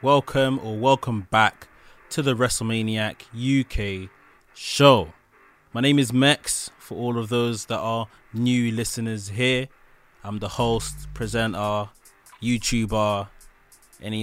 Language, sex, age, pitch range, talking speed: English, male, 20-39, 105-125 Hz, 120 wpm